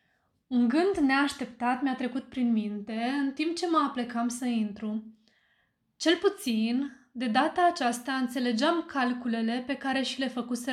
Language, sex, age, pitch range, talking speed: Romanian, female, 20-39, 235-285 Hz, 145 wpm